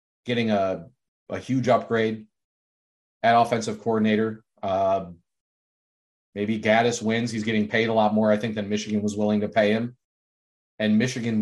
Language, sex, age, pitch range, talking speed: English, male, 30-49, 100-110 Hz, 150 wpm